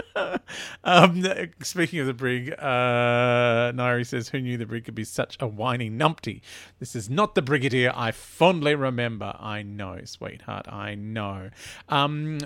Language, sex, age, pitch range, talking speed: English, male, 40-59, 120-190 Hz, 155 wpm